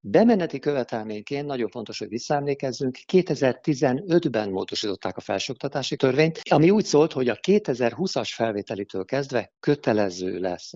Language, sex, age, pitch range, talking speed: Hungarian, male, 50-69, 100-140 Hz, 115 wpm